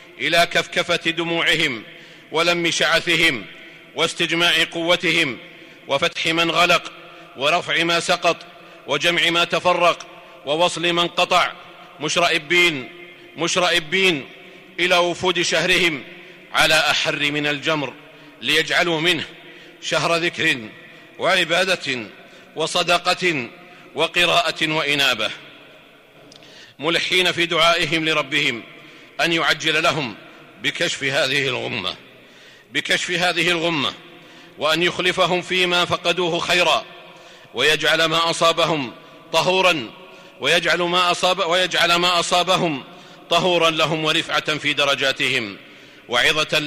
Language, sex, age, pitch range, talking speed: Arabic, male, 50-69, 160-175 Hz, 80 wpm